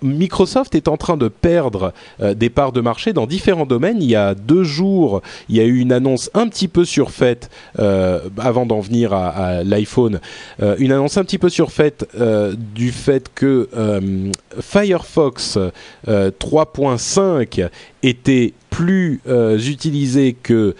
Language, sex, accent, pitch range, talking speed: French, male, French, 105-145 Hz, 160 wpm